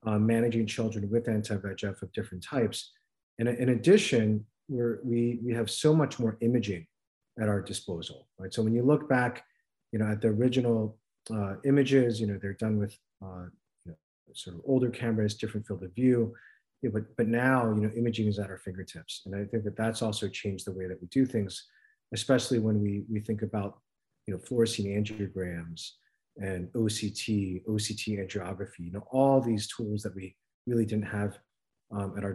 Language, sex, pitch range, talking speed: English, male, 100-120 Hz, 185 wpm